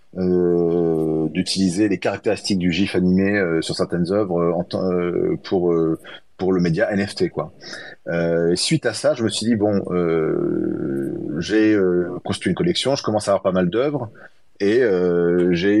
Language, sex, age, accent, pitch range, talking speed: French, male, 30-49, French, 90-110 Hz, 165 wpm